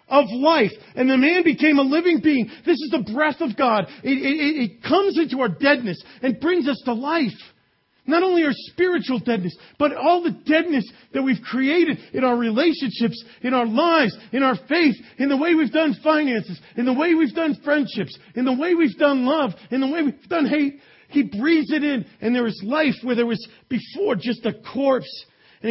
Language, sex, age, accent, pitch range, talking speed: English, male, 40-59, American, 230-305 Hz, 205 wpm